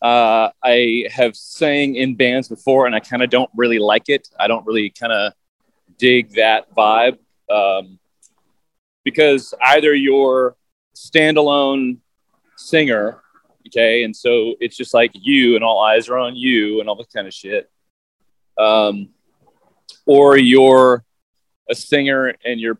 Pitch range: 105-130 Hz